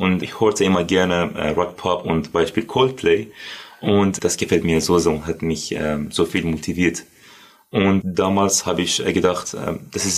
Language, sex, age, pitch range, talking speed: German, male, 20-39, 85-100 Hz, 185 wpm